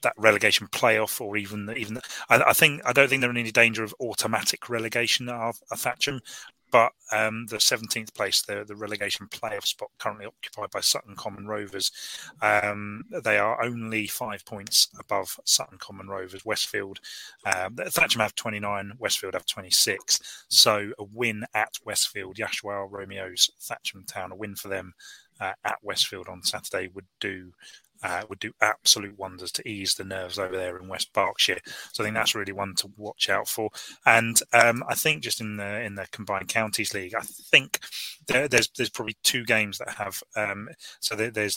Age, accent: 30-49, British